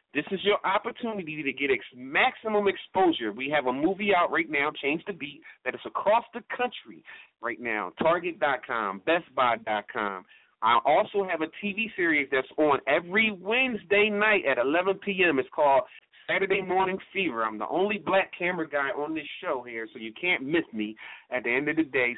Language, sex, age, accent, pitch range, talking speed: English, male, 30-49, American, 145-210 Hz, 185 wpm